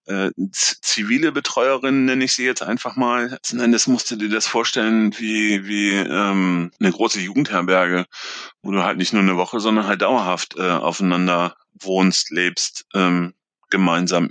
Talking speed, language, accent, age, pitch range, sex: 155 wpm, German, German, 30-49, 85-105 Hz, male